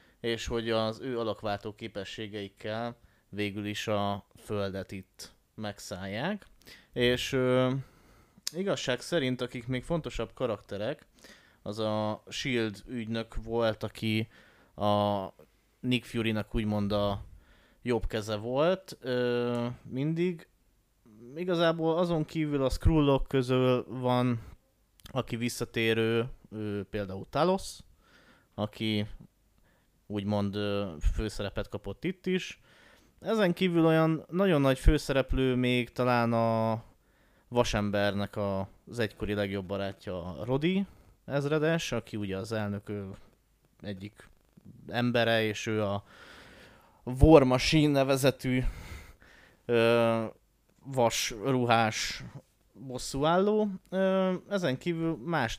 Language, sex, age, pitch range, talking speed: Hungarian, male, 20-39, 105-135 Hz, 95 wpm